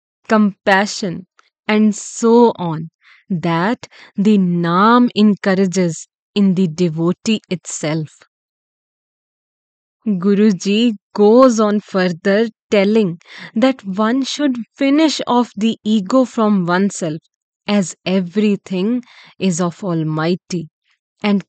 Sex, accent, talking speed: female, Indian, 90 wpm